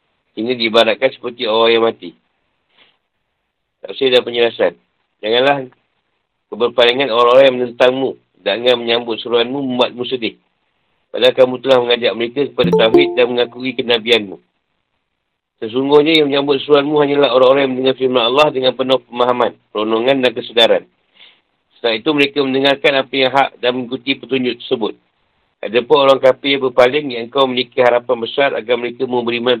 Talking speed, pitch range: 140 wpm, 120-140 Hz